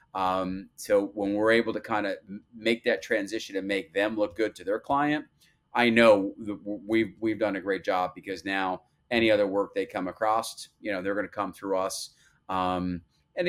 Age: 30-49